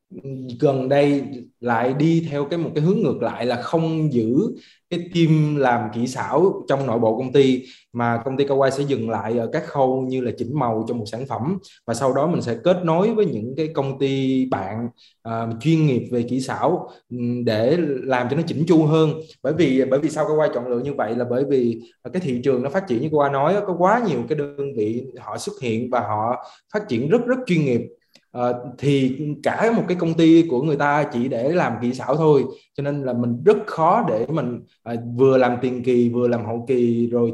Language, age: Vietnamese, 20-39